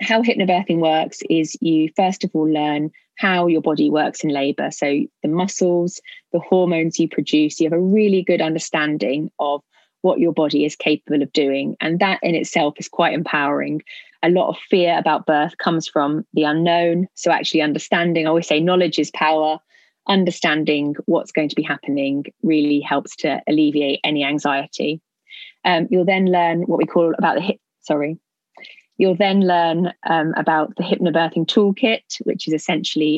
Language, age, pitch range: English, 20-39, 155-180 Hz